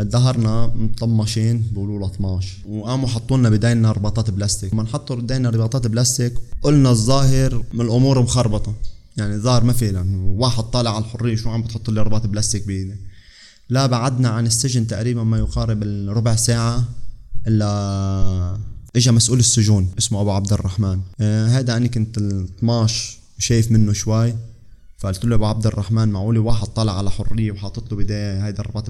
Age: 20-39